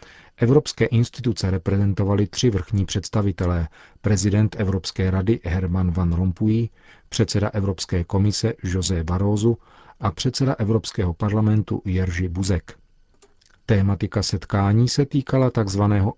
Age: 40-59